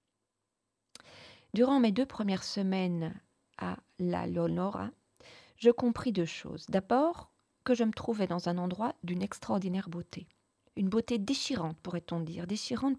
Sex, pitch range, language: female, 170-210 Hz, French